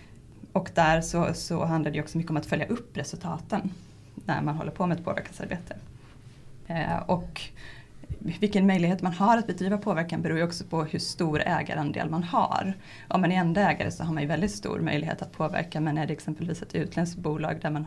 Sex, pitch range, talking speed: female, 155-195 Hz, 205 wpm